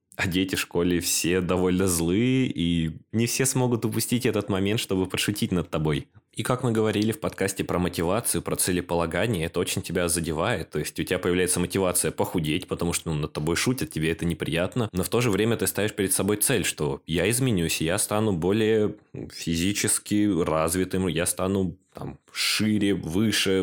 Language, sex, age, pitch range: Russian, male, 20-39, 85-105 Hz